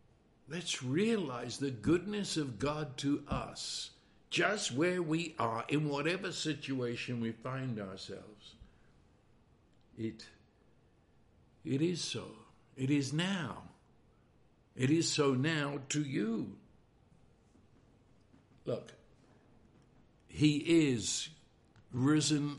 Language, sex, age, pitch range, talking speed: English, male, 60-79, 125-155 Hz, 95 wpm